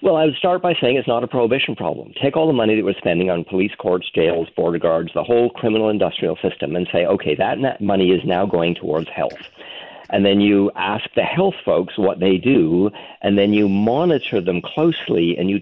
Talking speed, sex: 225 wpm, male